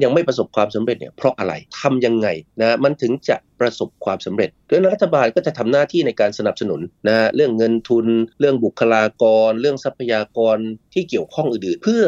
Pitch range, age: 110-145 Hz, 30-49